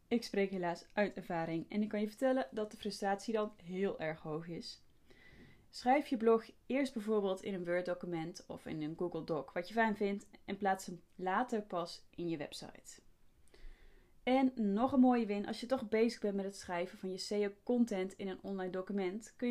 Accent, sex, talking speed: Dutch, female, 205 wpm